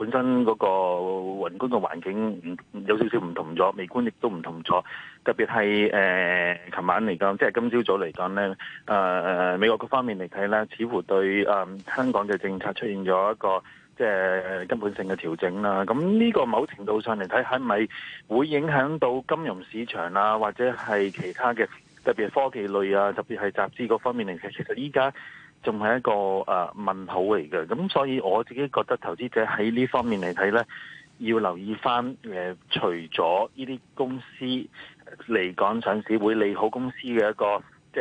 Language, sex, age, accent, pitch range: Chinese, male, 30-49, native, 95-125 Hz